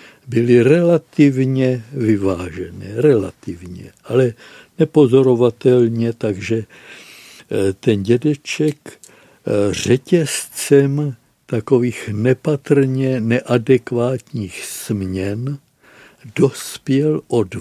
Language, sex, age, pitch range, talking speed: Czech, male, 60-79, 105-130 Hz, 55 wpm